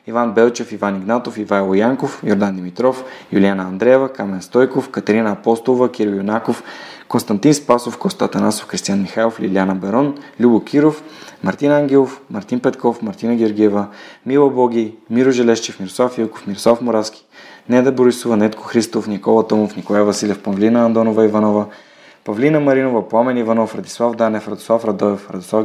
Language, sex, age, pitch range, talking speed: Bulgarian, male, 20-39, 105-120 Hz, 140 wpm